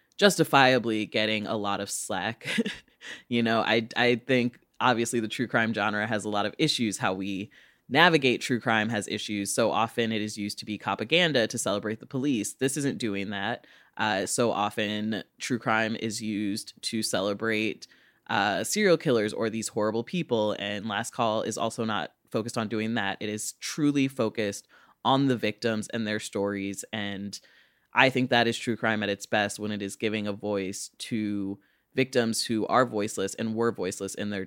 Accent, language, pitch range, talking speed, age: American, English, 105-125 Hz, 185 wpm, 20-39